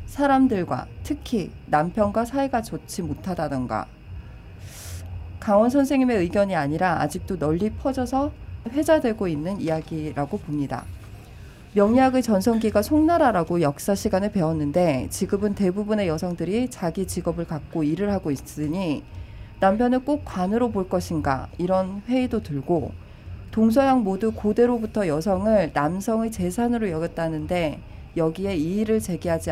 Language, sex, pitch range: Korean, female, 155-220 Hz